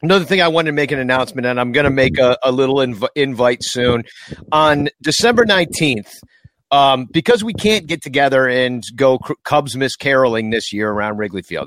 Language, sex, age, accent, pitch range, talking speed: English, male, 40-59, American, 130-165 Hz, 200 wpm